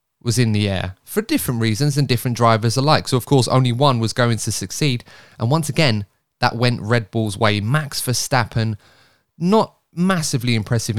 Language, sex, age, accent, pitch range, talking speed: English, male, 20-39, British, 105-130 Hz, 180 wpm